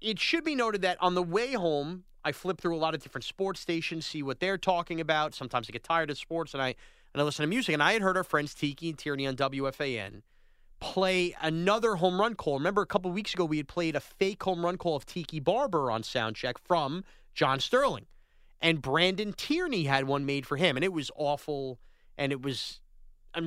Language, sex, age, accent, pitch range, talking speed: English, male, 30-49, American, 140-185 Hz, 230 wpm